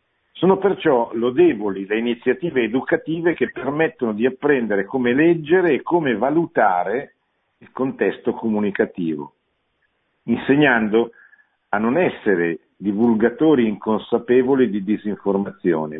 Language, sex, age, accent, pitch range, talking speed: Italian, male, 50-69, native, 100-135 Hz, 100 wpm